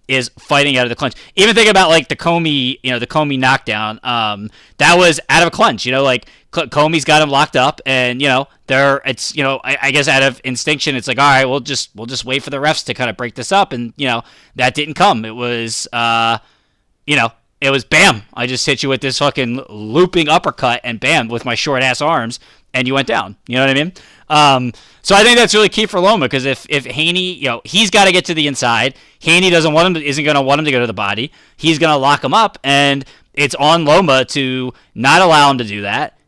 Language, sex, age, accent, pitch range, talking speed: English, male, 20-39, American, 125-160 Hz, 255 wpm